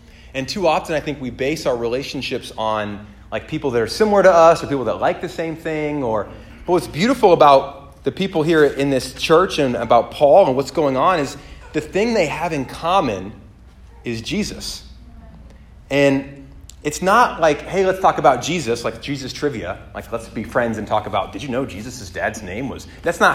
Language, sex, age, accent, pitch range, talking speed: English, male, 30-49, American, 100-145 Hz, 205 wpm